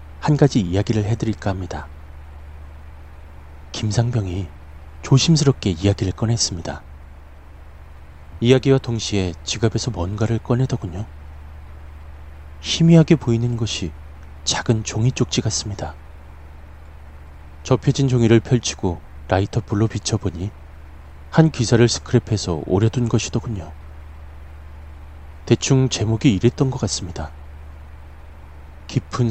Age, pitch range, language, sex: 30-49, 75-115 Hz, Korean, male